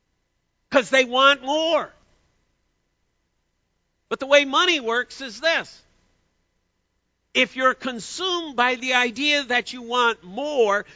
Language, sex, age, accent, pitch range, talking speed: English, male, 50-69, American, 230-290 Hz, 115 wpm